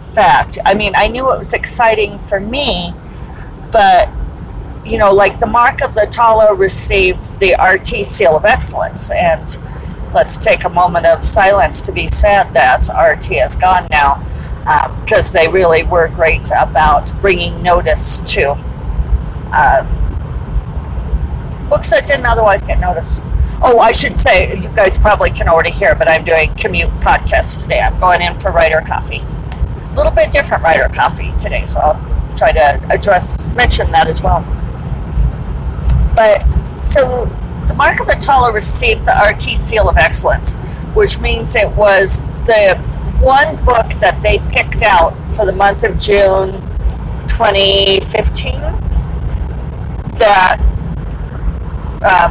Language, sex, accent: English, female, American